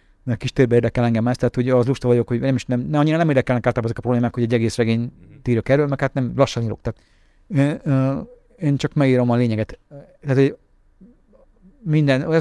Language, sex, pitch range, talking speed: Hungarian, male, 120-155 Hz, 215 wpm